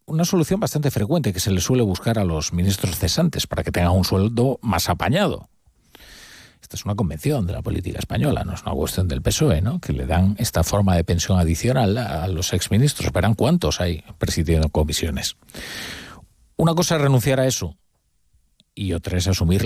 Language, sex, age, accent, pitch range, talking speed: Spanish, male, 40-59, Spanish, 85-115 Hz, 185 wpm